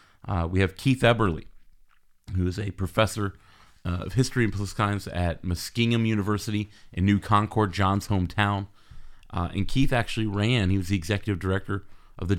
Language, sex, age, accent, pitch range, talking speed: English, male, 30-49, American, 90-105 Hz, 165 wpm